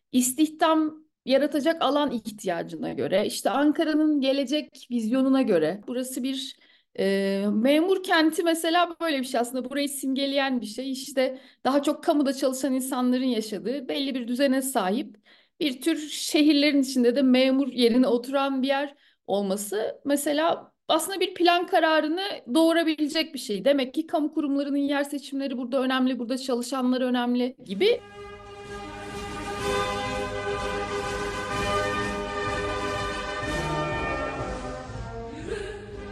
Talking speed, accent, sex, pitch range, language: 110 wpm, native, female, 220-295 Hz, Turkish